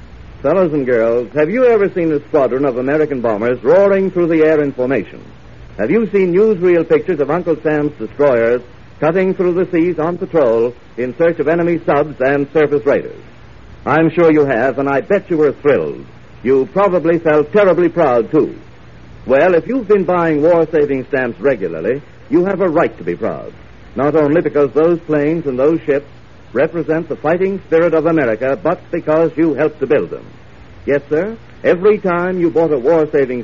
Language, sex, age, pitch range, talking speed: English, male, 60-79, 135-175 Hz, 180 wpm